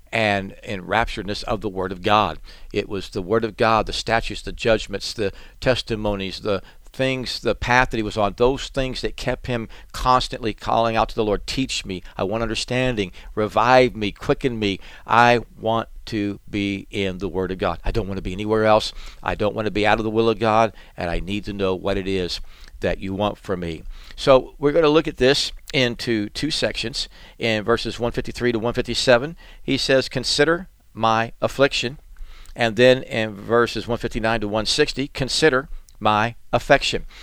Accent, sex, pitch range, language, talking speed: American, male, 100-125 Hz, English, 190 wpm